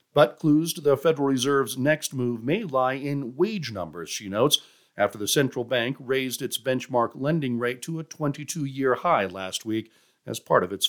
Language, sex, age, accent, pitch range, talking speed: English, male, 50-69, American, 115-155 Hz, 185 wpm